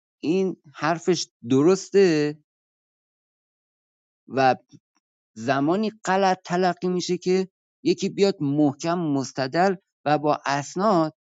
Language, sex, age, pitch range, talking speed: Persian, male, 50-69, 130-180 Hz, 85 wpm